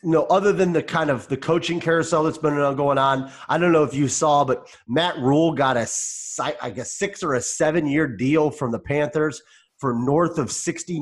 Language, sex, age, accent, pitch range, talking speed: English, male, 30-49, American, 130-165 Hz, 225 wpm